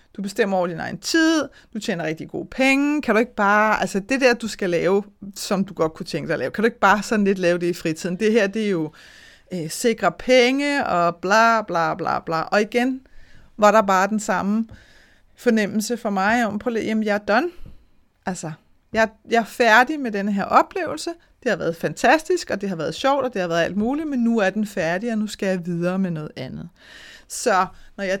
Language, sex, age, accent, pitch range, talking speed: Danish, female, 30-49, native, 185-235 Hz, 230 wpm